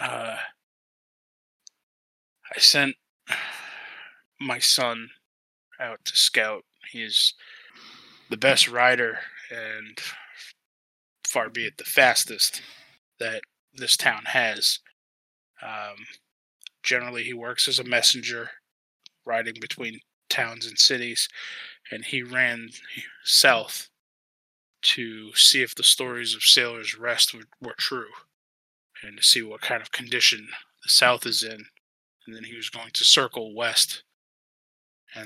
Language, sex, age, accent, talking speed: English, male, 20-39, American, 115 wpm